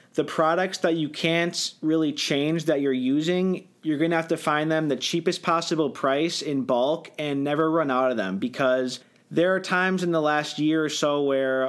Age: 30-49